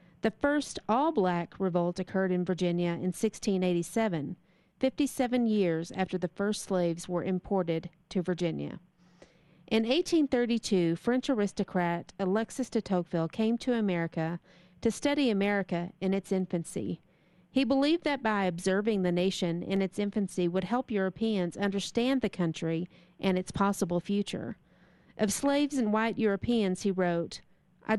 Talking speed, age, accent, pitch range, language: 135 wpm, 40-59, American, 175-220 Hz, English